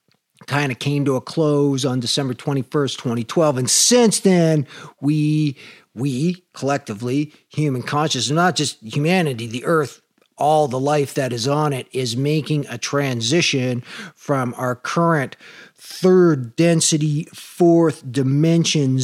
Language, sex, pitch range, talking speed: English, male, 135-185 Hz, 135 wpm